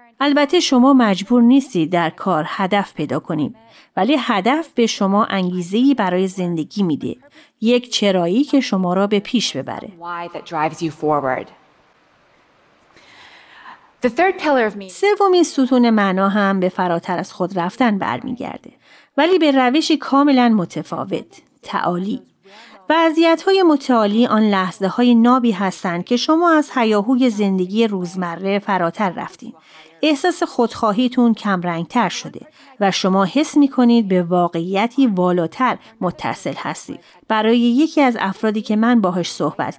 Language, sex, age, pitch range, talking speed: Persian, female, 30-49, 185-265 Hz, 120 wpm